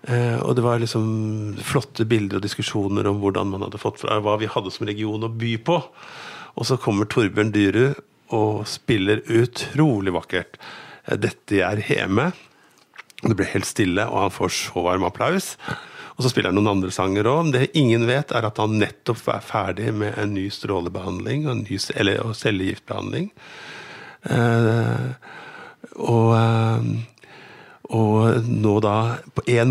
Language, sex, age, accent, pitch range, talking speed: English, male, 50-69, Norwegian, 100-120 Hz, 155 wpm